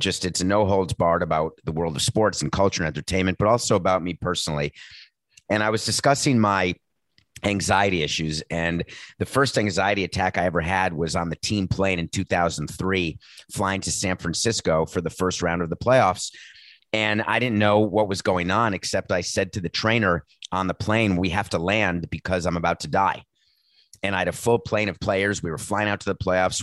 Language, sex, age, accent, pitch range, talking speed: English, male, 30-49, American, 85-105 Hz, 210 wpm